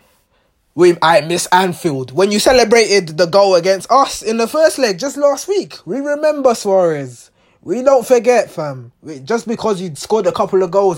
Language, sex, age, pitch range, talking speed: English, male, 20-39, 160-230 Hz, 185 wpm